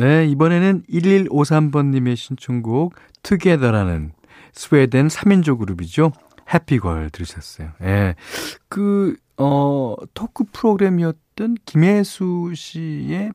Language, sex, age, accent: Korean, male, 40-59, native